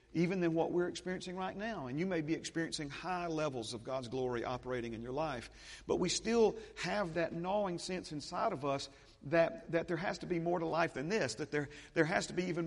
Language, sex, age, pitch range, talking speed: English, male, 50-69, 130-165 Hz, 230 wpm